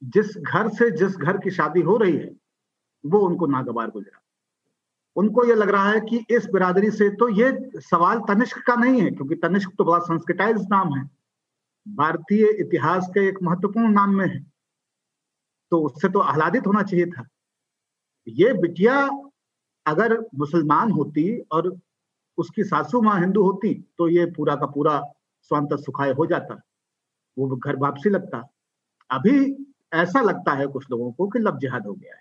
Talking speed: 160 wpm